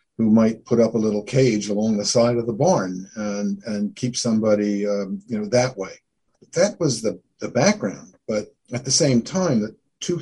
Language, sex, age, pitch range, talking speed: English, male, 50-69, 100-130 Hz, 180 wpm